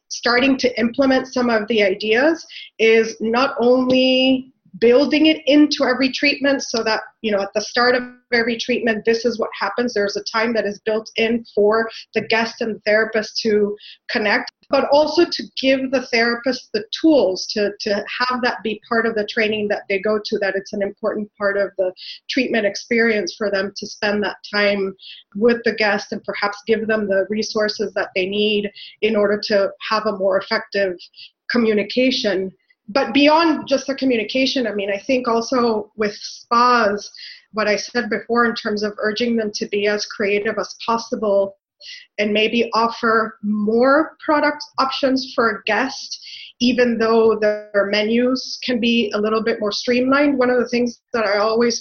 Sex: female